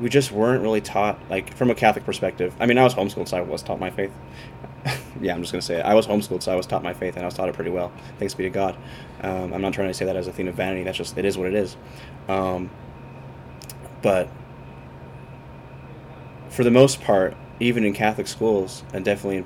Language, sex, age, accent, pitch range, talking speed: English, male, 20-39, American, 90-105 Hz, 245 wpm